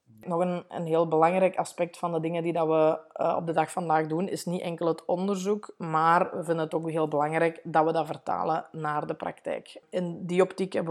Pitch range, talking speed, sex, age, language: 165-195 Hz, 220 wpm, female, 20-39, Dutch